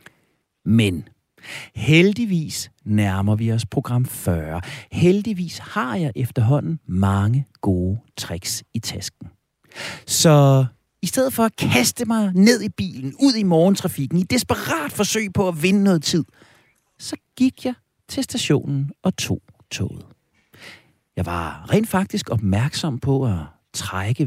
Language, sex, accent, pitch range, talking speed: Danish, male, native, 110-180 Hz, 130 wpm